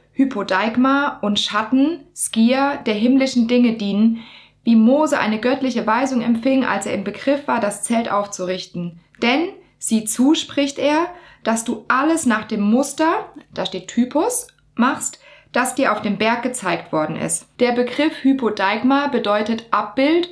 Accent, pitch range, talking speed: German, 215-270 Hz, 140 wpm